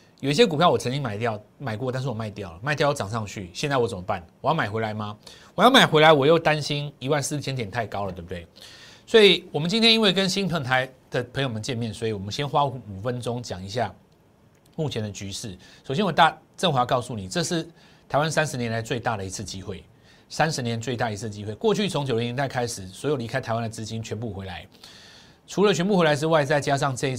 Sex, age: male, 30-49